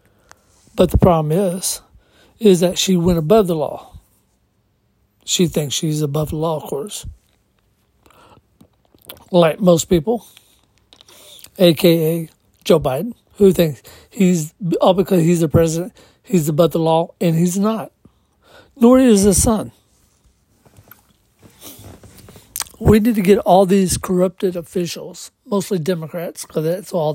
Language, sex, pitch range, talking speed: English, male, 165-200 Hz, 125 wpm